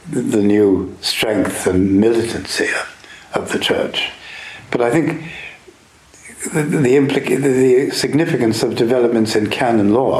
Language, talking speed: English, 130 wpm